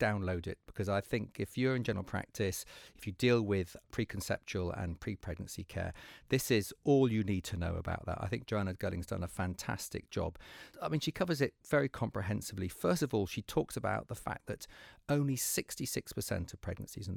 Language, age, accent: English, 40-59, British